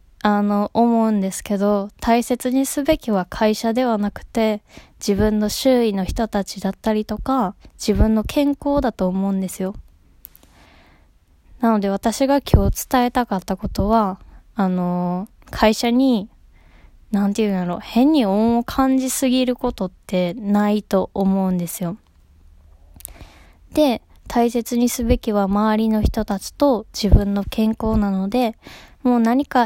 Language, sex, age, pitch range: Japanese, female, 20-39, 200-245 Hz